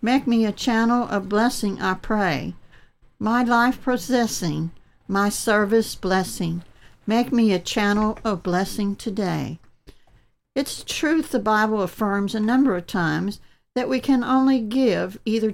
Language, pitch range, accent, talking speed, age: English, 200-235 Hz, American, 135 wpm, 60-79